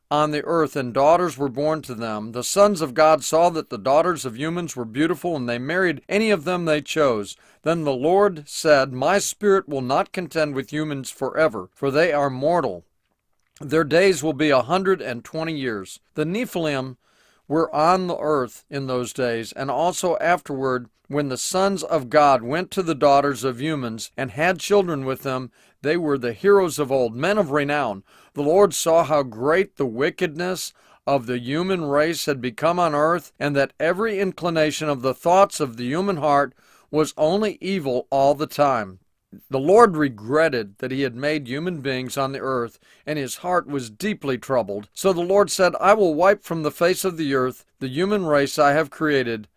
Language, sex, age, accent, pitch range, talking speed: English, male, 40-59, American, 135-175 Hz, 195 wpm